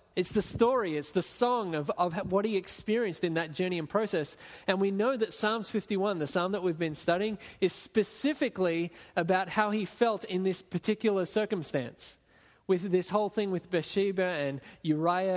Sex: male